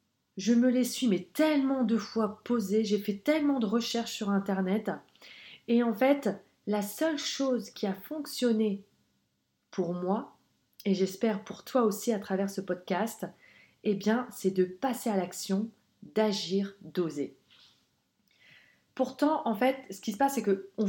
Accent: French